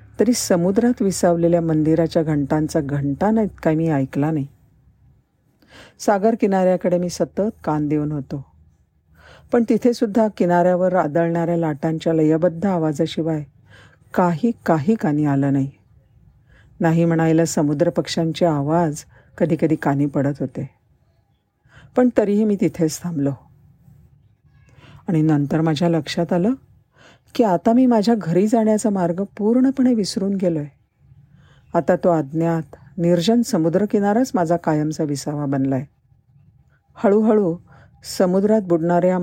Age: 50-69